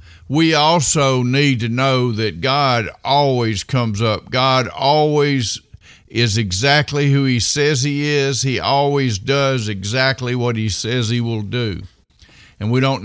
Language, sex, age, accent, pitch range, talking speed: English, male, 50-69, American, 115-140 Hz, 145 wpm